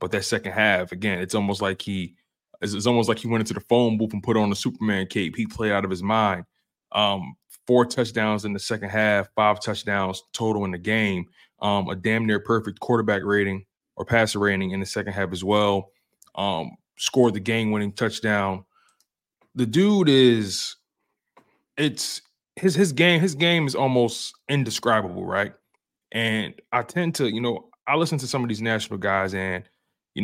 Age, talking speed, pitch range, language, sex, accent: 20-39, 185 wpm, 100-120 Hz, English, male, American